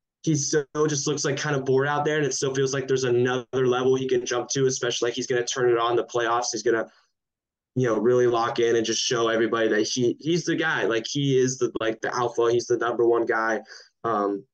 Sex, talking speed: male, 260 wpm